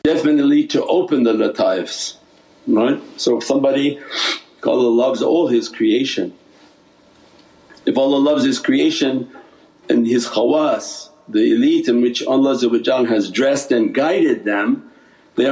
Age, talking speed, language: 50-69, 130 wpm, English